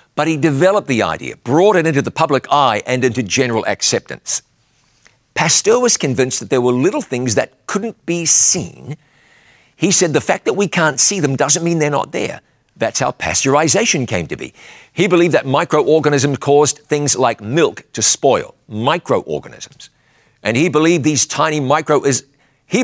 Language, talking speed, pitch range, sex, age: English, 170 wpm, 125-165 Hz, male, 50-69